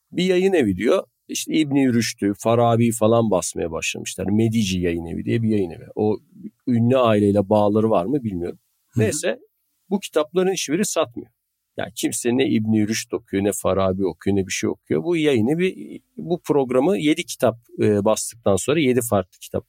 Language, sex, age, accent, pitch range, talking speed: Turkish, male, 50-69, native, 100-145 Hz, 170 wpm